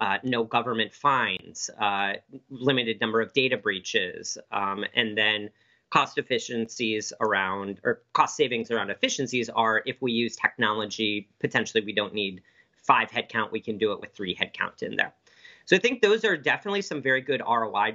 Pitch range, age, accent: 115-140 Hz, 40-59, American